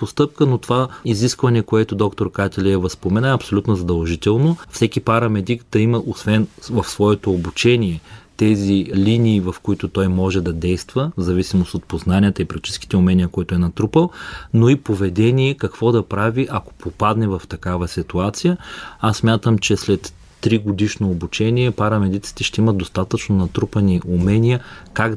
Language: Bulgarian